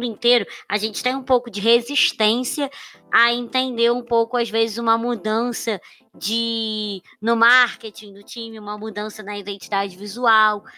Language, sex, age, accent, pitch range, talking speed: Portuguese, male, 20-39, Brazilian, 215-245 Hz, 140 wpm